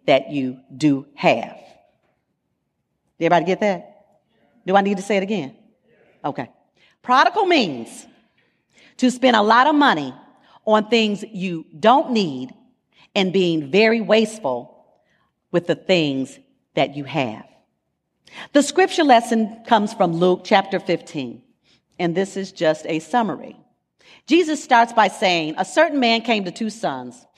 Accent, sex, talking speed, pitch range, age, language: American, female, 140 wpm, 175-250 Hz, 40-59, English